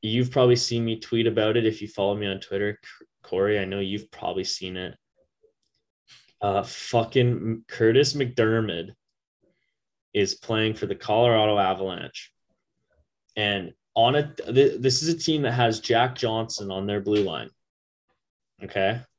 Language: English